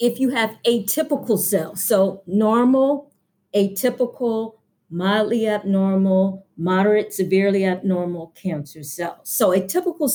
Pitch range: 190-225 Hz